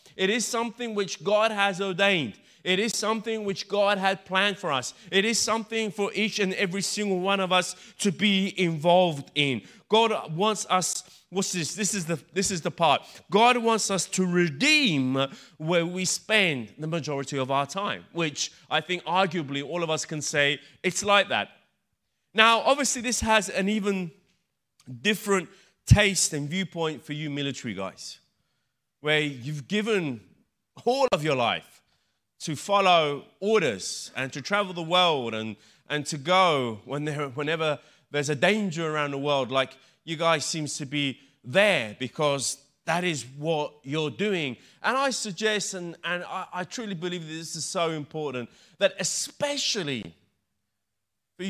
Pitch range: 150-205 Hz